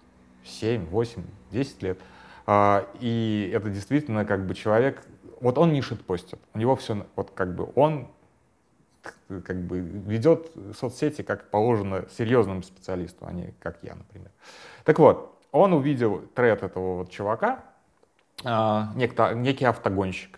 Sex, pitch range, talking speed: male, 95-120 Hz, 135 wpm